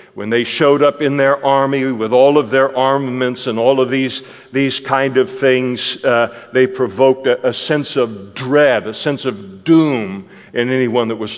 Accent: American